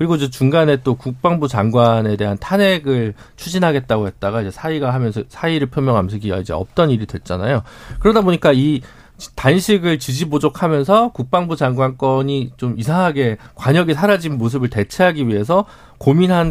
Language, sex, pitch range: Korean, male, 115-170 Hz